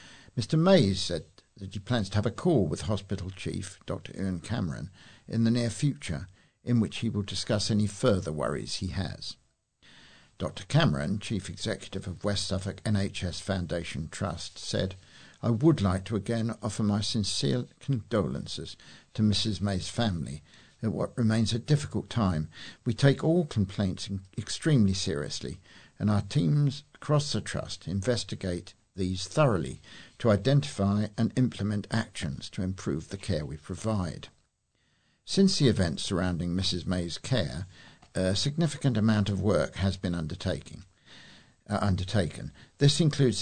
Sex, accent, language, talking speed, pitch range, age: male, British, English, 145 wpm, 95-115 Hz, 60-79